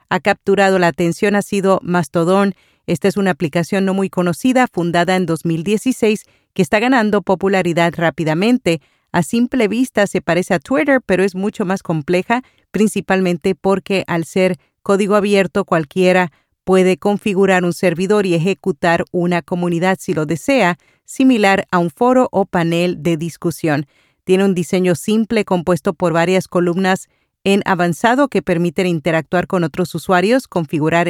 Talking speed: 150 wpm